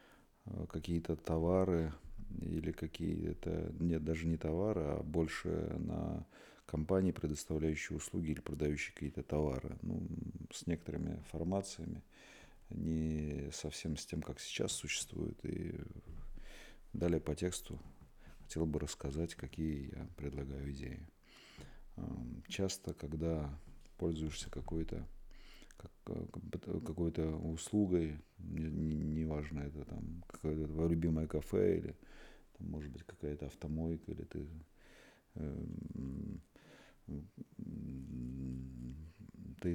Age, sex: 40-59, male